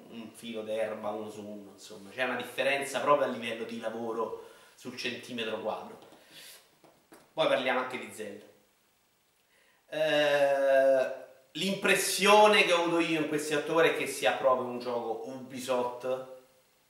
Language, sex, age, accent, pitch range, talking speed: Italian, male, 30-49, native, 115-155 Hz, 140 wpm